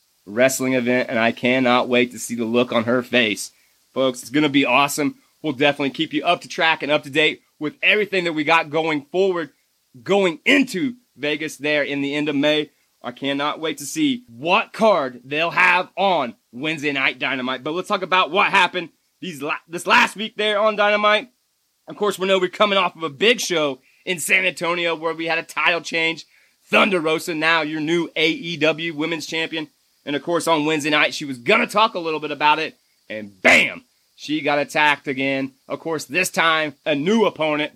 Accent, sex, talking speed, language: American, male, 200 wpm, English